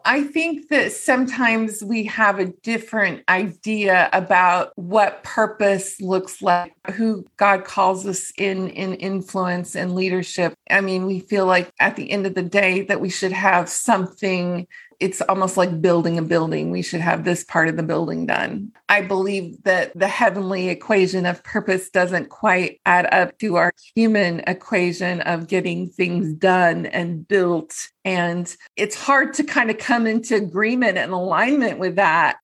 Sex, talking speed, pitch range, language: female, 165 wpm, 180-215 Hz, English